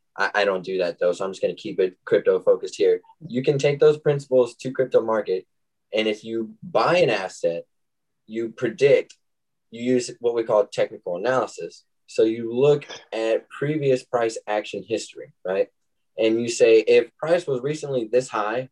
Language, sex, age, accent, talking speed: English, male, 20-39, American, 175 wpm